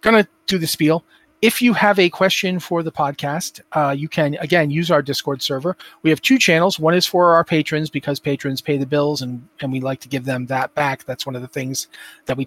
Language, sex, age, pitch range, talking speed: English, male, 40-59, 140-180 Hz, 245 wpm